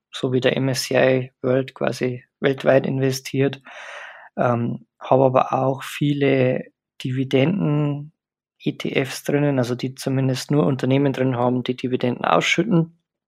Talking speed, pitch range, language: 115 wpm, 130-145 Hz, German